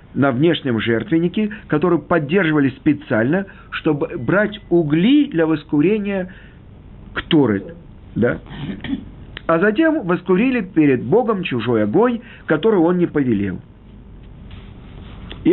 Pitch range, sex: 120-185 Hz, male